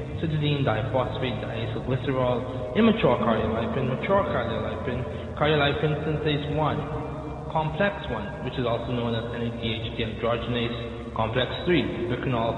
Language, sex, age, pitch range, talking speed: English, male, 20-39, 115-140 Hz, 105 wpm